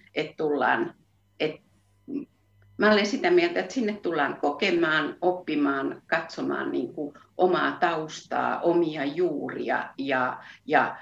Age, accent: 50-69, native